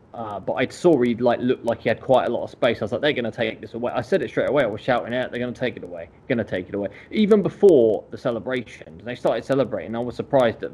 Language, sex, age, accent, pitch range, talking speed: English, male, 20-39, British, 105-135 Hz, 305 wpm